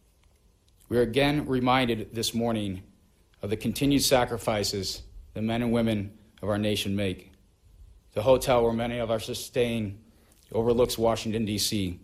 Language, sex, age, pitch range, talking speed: English, male, 40-59, 90-120 Hz, 140 wpm